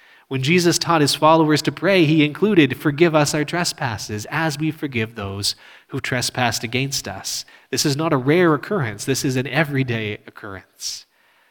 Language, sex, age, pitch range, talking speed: English, male, 30-49, 120-160 Hz, 165 wpm